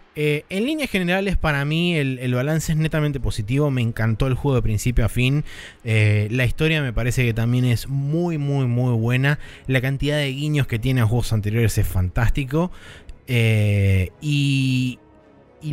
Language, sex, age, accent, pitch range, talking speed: Spanish, male, 20-39, Argentinian, 115-155 Hz, 175 wpm